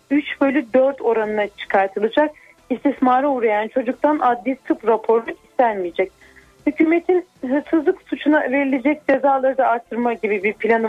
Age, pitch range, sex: 30-49, 230-290 Hz, female